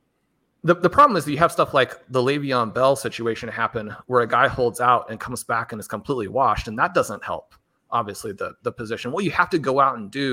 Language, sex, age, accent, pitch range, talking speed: English, male, 30-49, American, 115-135 Hz, 245 wpm